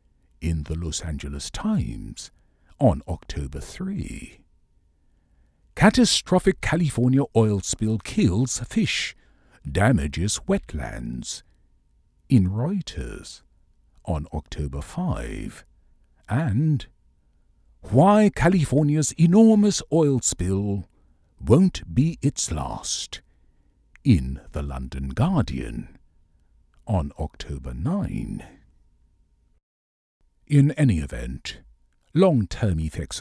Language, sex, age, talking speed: English, male, 60-79, 80 wpm